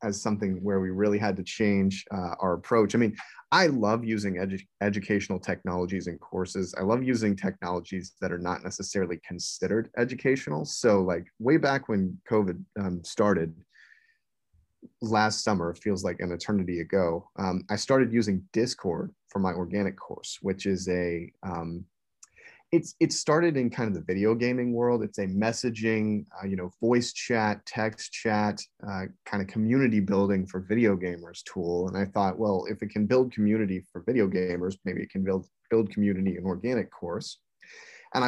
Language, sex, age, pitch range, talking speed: English, male, 30-49, 95-110 Hz, 170 wpm